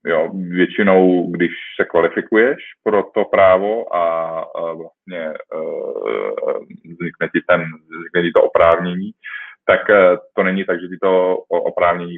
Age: 30-49